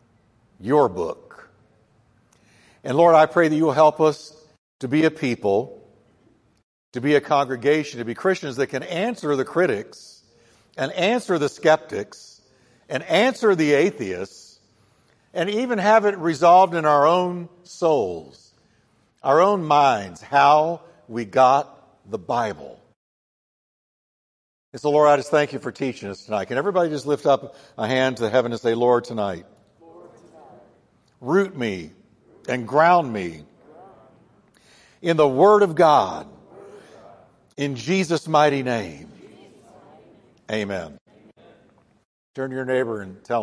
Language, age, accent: English, 60-79, American